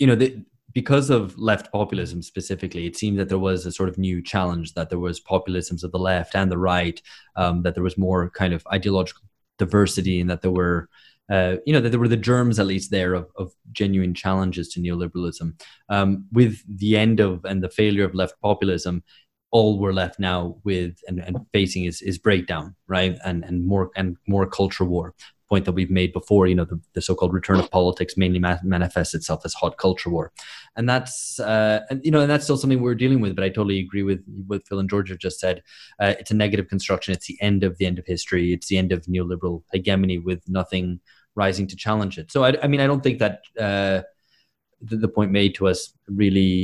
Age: 20-39